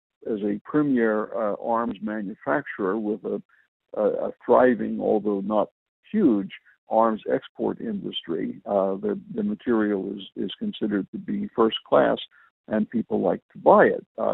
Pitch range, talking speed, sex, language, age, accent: 105-120 Hz, 145 wpm, male, English, 60-79, American